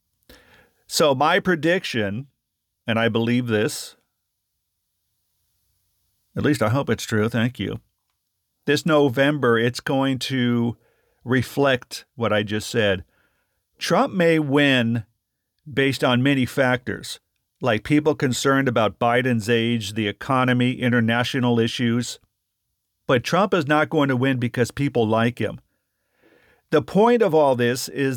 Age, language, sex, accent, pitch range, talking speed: 50-69, English, male, American, 115-145 Hz, 125 wpm